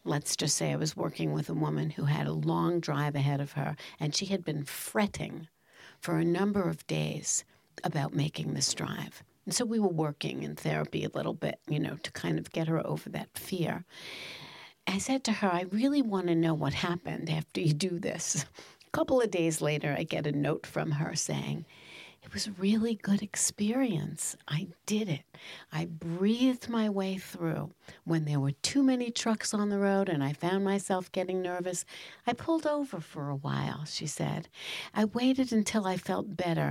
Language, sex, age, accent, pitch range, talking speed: English, female, 60-79, American, 150-205 Hz, 200 wpm